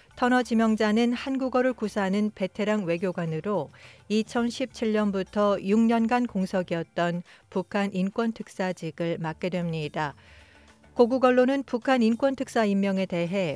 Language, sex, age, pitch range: Korean, female, 40-59, 175-230 Hz